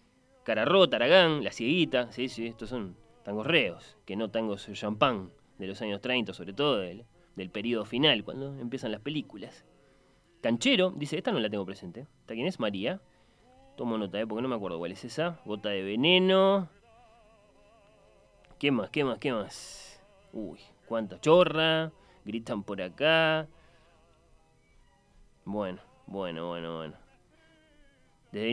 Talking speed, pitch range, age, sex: 145 wpm, 105-165 Hz, 20-39, male